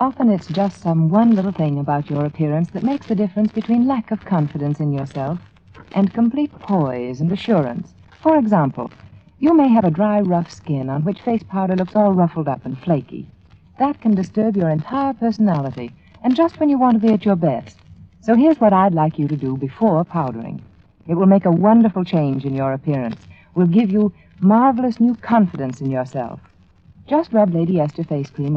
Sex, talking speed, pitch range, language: female, 195 wpm, 145-225 Hz, English